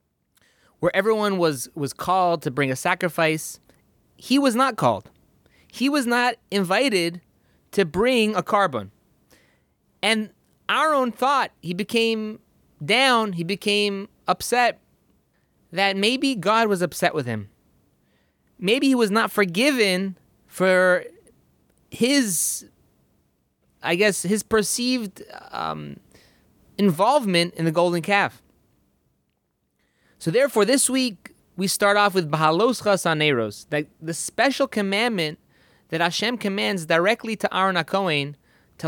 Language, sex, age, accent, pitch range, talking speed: English, male, 20-39, American, 165-225 Hz, 115 wpm